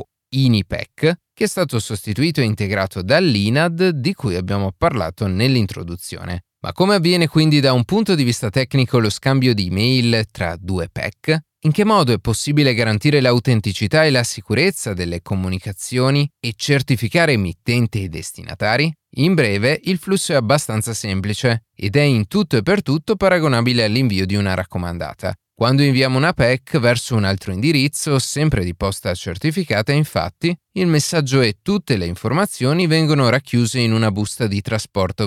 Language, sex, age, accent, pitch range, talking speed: Italian, male, 30-49, native, 105-150 Hz, 155 wpm